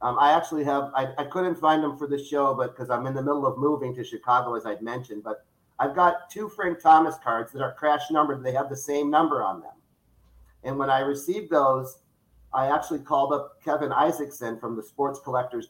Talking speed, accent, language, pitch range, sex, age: 220 wpm, American, English, 135-165 Hz, male, 50-69